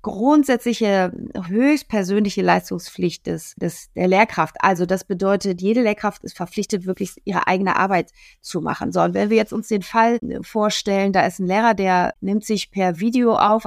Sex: female